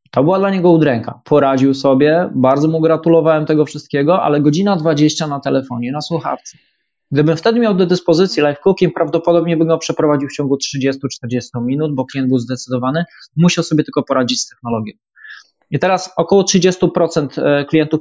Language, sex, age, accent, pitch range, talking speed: Polish, male, 20-39, native, 140-170 Hz, 165 wpm